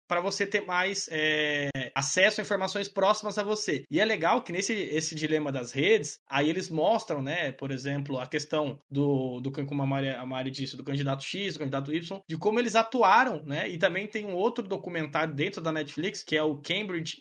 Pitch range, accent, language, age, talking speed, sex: 150-200 Hz, Brazilian, Portuguese, 20-39, 205 wpm, male